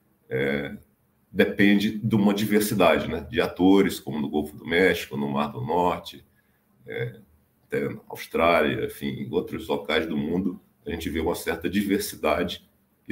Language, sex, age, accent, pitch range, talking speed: Portuguese, male, 50-69, Brazilian, 90-110 Hz, 155 wpm